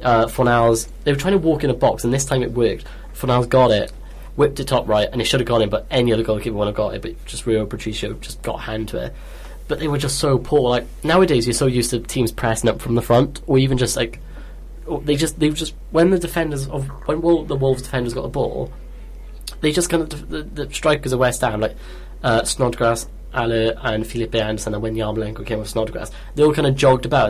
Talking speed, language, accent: 245 wpm, English, British